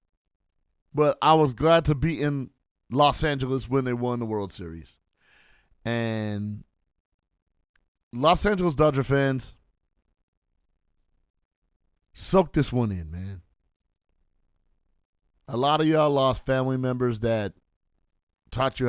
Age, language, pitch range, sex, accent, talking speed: 30-49, English, 95-145 Hz, male, American, 110 wpm